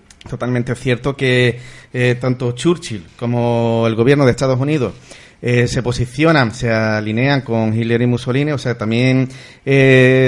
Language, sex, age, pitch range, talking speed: Spanish, male, 40-59, 115-135 Hz, 145 wpm